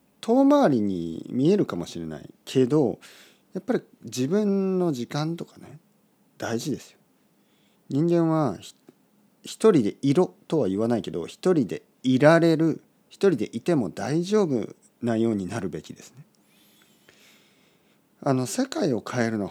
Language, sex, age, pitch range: Japanese, male, 40-59, 100-160 Hz